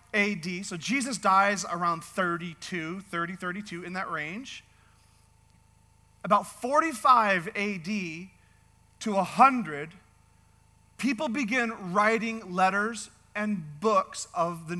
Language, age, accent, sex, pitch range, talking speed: English, 40-59, American, male, 170-235 Hz, 95 wpm